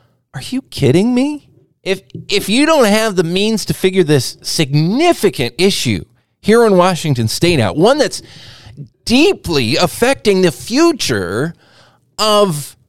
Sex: male